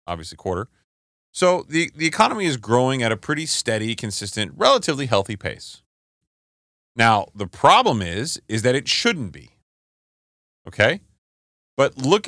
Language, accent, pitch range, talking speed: English, American, 85-130 Hz, 135 wpm